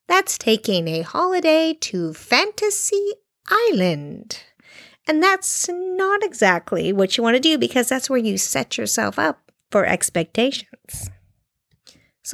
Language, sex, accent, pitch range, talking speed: English, female, American, 190-255 Hz, 125 wpm